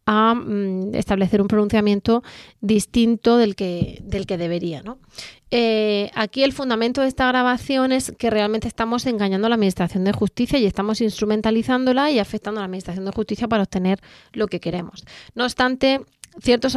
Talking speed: 155 wpm